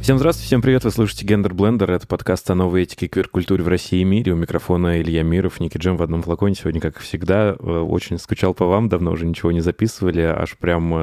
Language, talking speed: Russian, 230 wpm